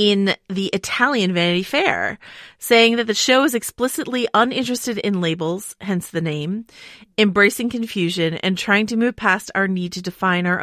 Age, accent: 30-49, American